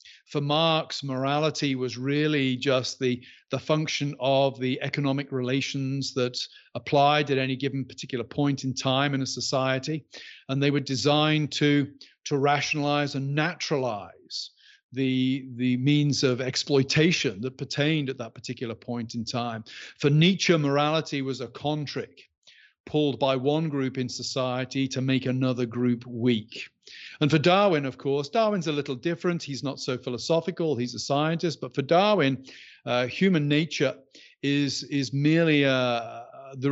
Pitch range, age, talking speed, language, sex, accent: 130-150 Hz, 40-59, 150 wpm, English, male, British